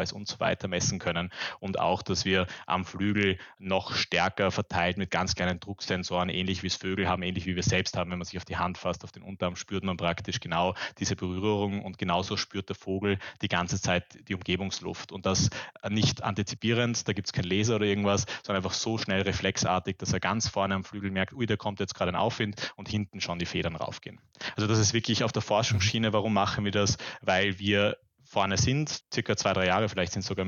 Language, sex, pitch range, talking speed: German, male, 90-100 Hz, 220 wpm